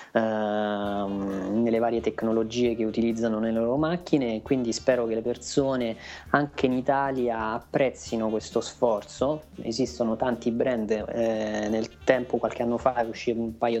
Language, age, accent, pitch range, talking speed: Italian, 20-39, native, 110-130 Hz, 130 wpm